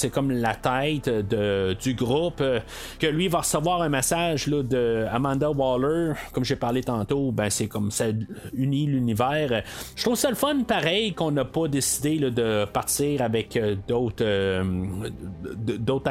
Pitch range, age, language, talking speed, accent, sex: 120-165 Hz, 30-49, French, 155 wpm, Canadian, male